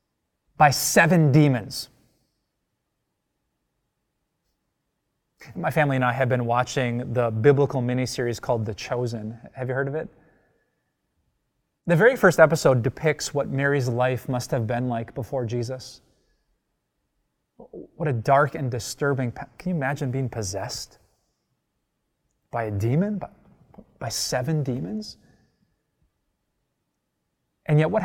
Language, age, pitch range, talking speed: English, 20-39, 120-180 Hz, 115 wpm